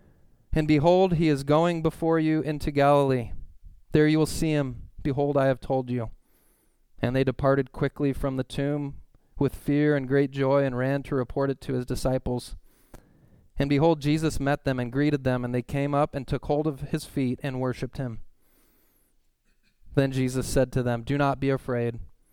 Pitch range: 130-160 Hz